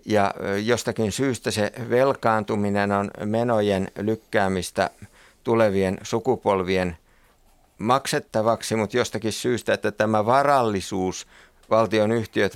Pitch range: 95-110 Hz